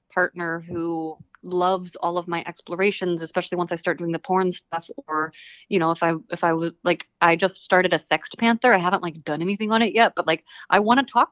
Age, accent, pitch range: 20-39, American, 165-205 Hz